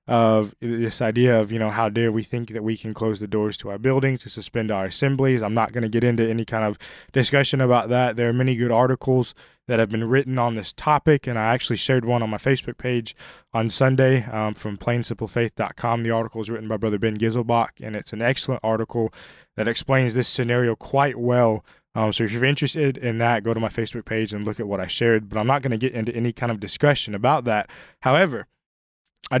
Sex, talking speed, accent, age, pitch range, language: male, 235 wpm, American, 20-39, 110-125 Hz, English